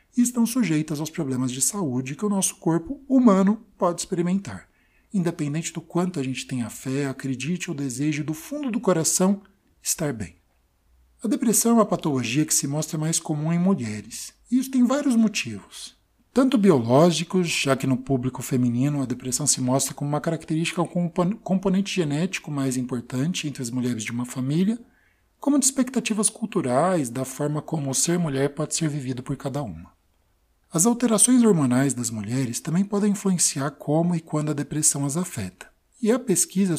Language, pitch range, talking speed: Portuguese, 130-195 Hz, 175 wpm